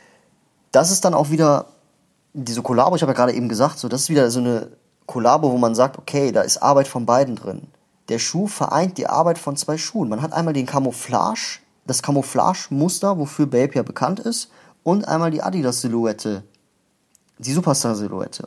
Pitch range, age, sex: 120-155 Hz, 30-49, male